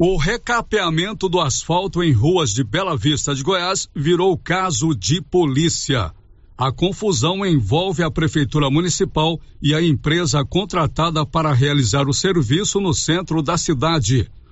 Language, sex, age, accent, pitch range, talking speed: Portuguese, male, 60-79, Brazilian, 150-185 Hz, 135 wpm